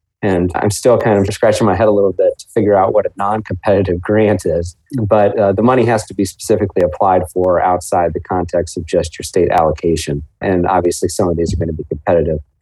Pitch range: 90-110 Hz